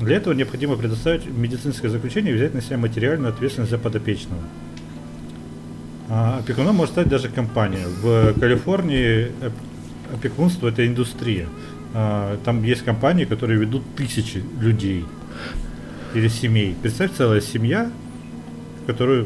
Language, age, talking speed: Russian, 40-59, 120 wpm